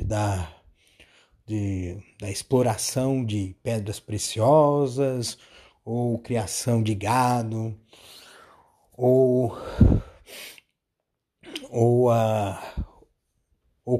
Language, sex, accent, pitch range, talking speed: Portuguese, male, Brazilian, 110-160 Hz, 55 wpm